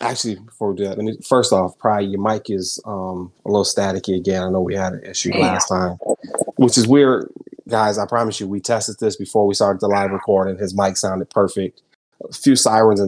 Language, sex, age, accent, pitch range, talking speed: English, male, 30-49, American, 95-120 Hz, 230 wpm